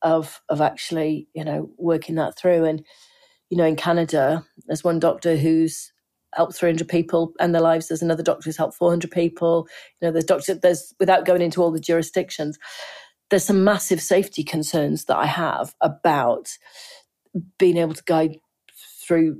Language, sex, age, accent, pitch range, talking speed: English, female, 40-59, British, 165-190 Hz, 170 wpm